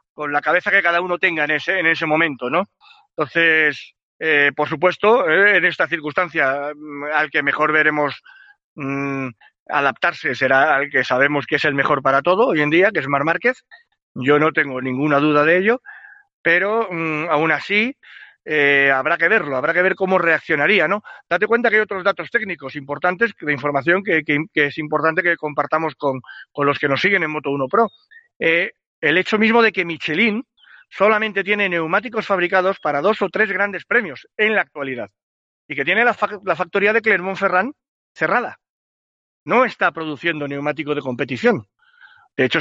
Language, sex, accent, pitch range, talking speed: Spanish, male, Spanish, 145-210 Hz, 180 wpm